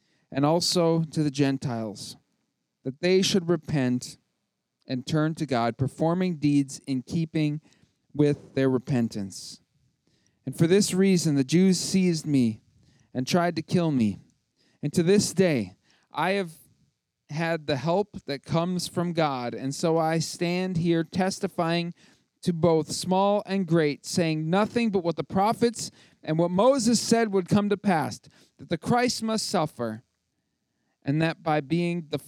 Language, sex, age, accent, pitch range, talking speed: English, male, 40-59, American, 140-195 Hz, 150 wpm